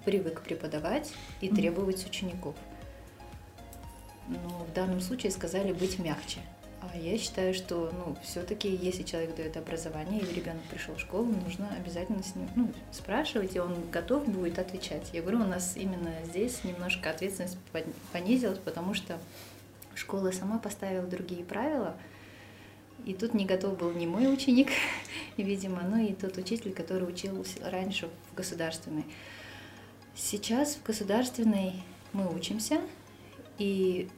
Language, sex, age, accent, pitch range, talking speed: Russian, female, 30-49, native, 165-200 Hz, 135 wpm